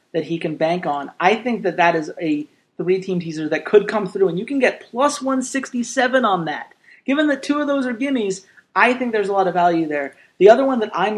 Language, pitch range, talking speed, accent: English, 180-250 Hz, 240 wpm, American